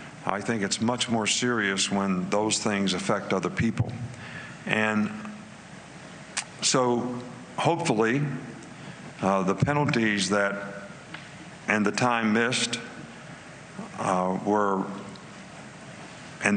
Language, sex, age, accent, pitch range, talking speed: English, male, 60-79, American, 95-115 Hz, 95 wpm